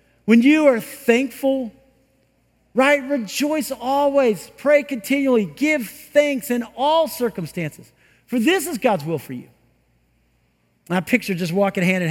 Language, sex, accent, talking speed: English, male, American, 135 wpm